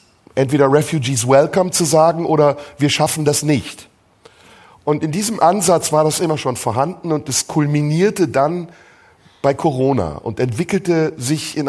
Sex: male